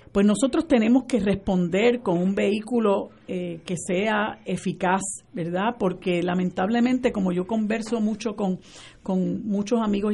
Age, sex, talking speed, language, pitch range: 50-69, female, 135 wpm, Spanish, 190-250 Hz